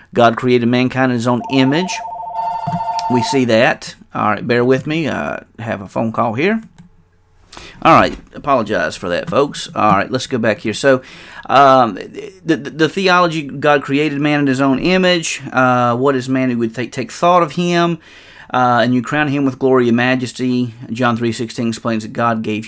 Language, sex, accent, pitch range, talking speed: English, male, American, 115-140 Hz, 195 wpm